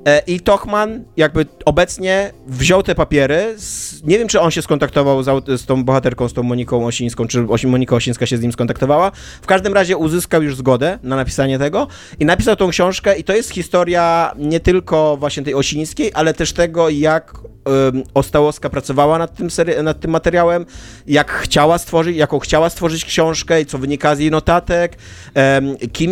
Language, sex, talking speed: Polish, male, 170 wpm